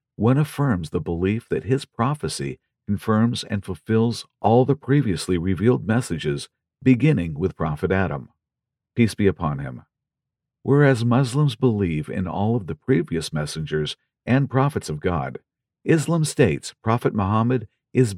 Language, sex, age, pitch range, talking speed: English, male, 50-69, 90-125 Hz, 135 wpm